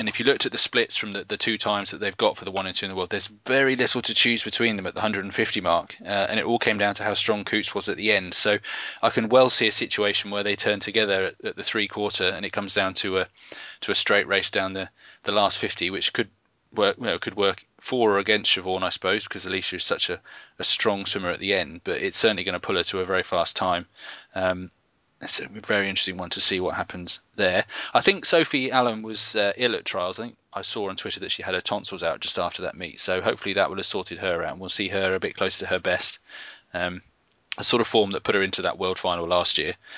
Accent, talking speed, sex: British, 275 wpm, male